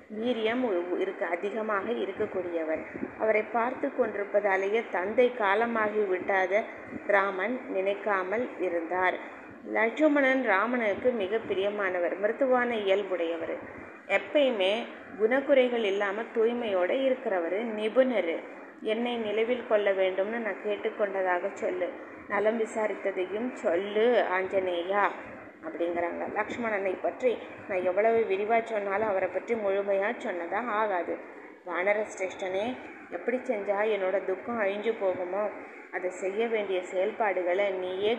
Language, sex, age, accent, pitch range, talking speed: Tamil, female, 20-39, native, 190-230 Hz, 95 wpm